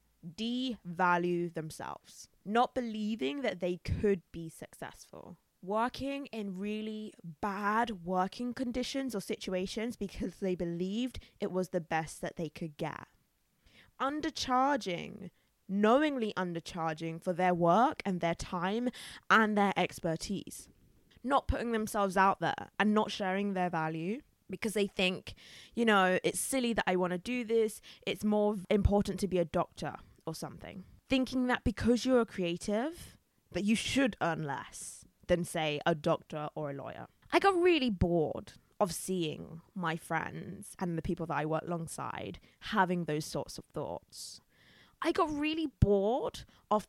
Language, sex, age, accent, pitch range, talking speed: English, female, 20-39, British, 175-225 Hz, 145 wpm